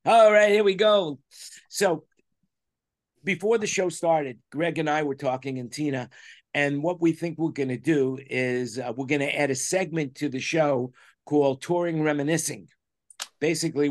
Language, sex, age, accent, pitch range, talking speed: English, male, 50-69, American, 130-160 Hz, 175 wpm